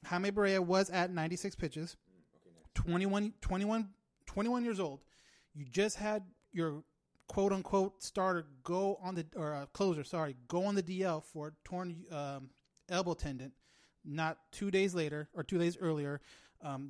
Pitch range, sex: 155-185 Hz, male